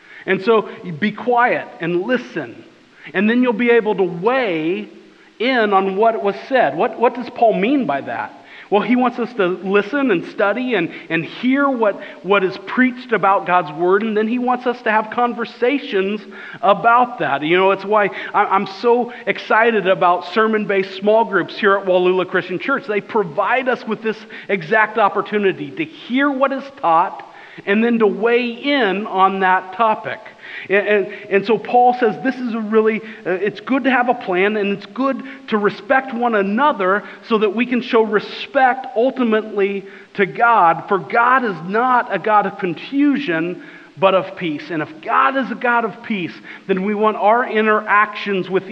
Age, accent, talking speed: 40-59, American, 180 wpm